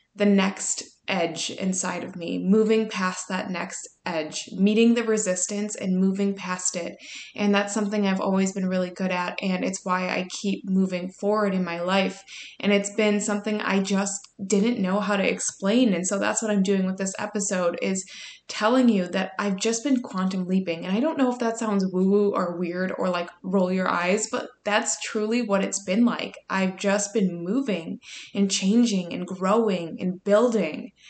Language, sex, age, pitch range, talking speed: English, female, 20-39, 185-215 Hz, 190 wpm